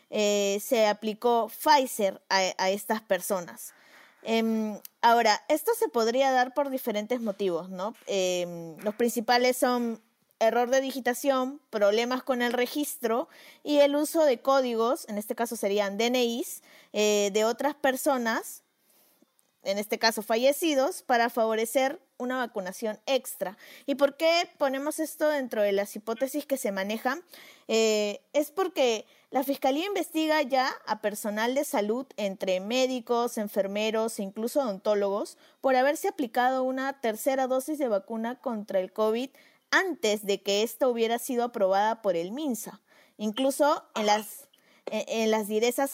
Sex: female